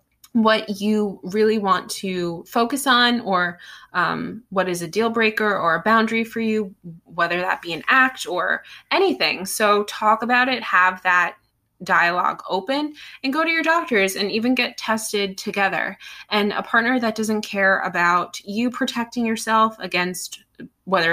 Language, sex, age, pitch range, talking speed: English, female, 20-39, 180-230 Hz, 160 wpm